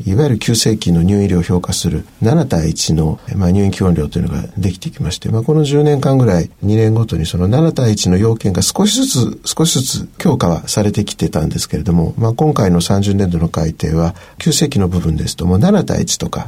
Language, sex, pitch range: Japanese, male, 90-120 Hz